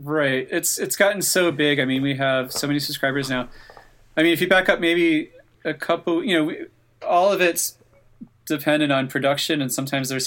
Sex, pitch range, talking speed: male, 125-150 Hz, 200 wpm